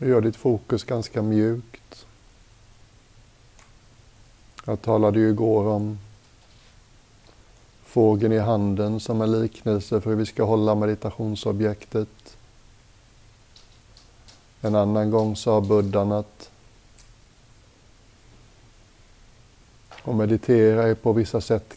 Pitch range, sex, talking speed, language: 105-115 Hz, male, 95 wpm, Swedish